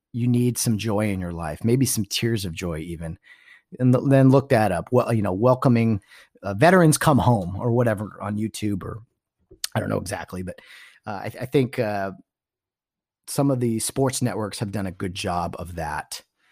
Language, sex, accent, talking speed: English, male, American, 200 wpm